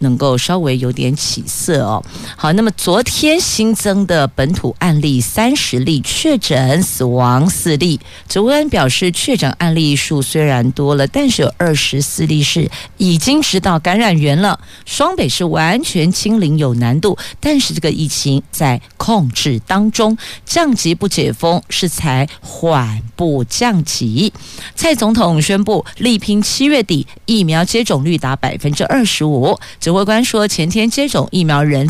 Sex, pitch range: female, 145-210 Hz